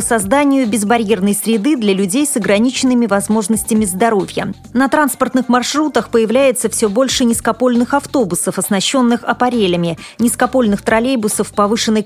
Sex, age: female, 30-49